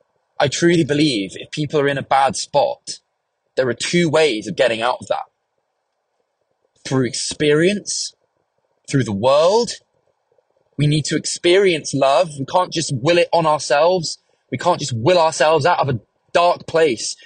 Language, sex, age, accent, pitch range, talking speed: English, male, 20-39, British, 135-170 Hz, 160 wpm